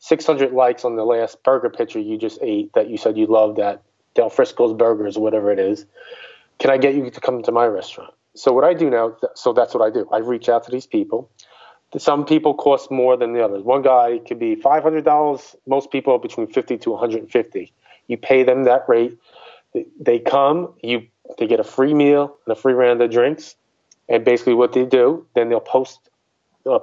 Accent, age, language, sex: American, 20-39, English, male